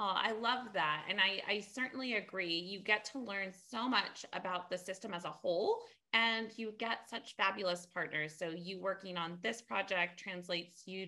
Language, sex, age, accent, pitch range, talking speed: English, female, 30-49, American, 170-210 Hz, 190 wpm